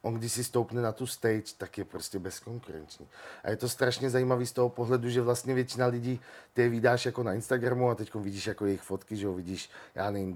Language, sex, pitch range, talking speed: Slovak, male, 105-125 Hz, 230 wpm